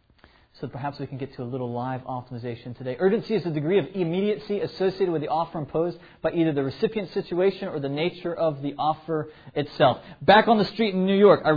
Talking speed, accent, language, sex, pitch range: 220 wpm, American, English, male, 135-200 Hz